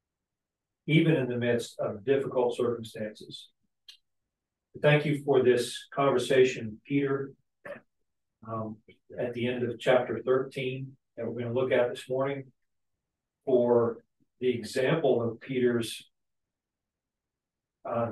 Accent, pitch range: American, 115-130 Hz